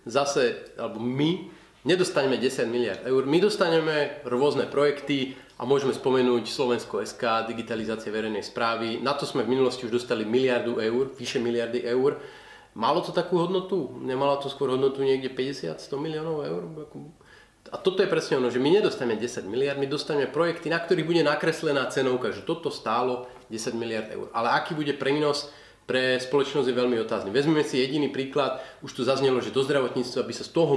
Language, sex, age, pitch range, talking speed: Slovak, male, 30-49, 120-150 Hz, 175 wpm